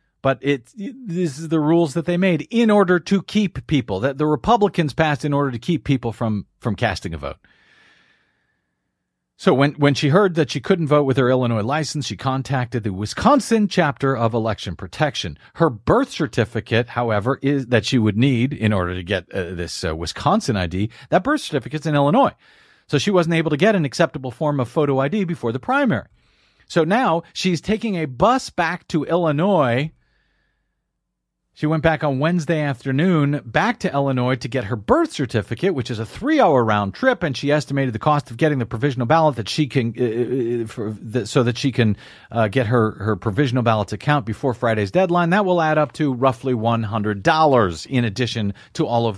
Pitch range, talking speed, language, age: 115-165 Hz, 195 wpm, English, 40-59